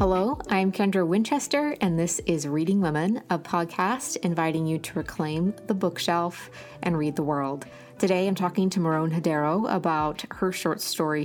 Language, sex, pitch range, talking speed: English, female, 160-215 Hz, 165 wpm